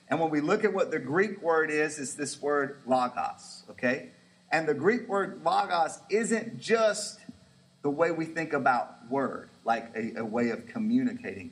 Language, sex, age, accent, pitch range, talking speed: English, male, 40-59, American, 125-200 Hz, 175 wpm